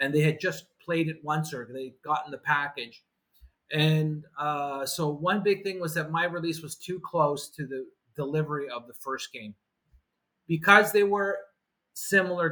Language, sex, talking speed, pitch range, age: English, male, 175 wpm, 140-185 Hz, 30-49